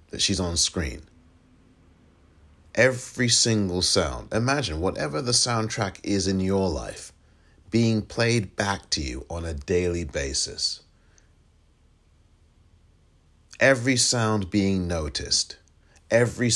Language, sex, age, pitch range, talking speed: English, male, 40-59, 80-105 Hz, 105 wpm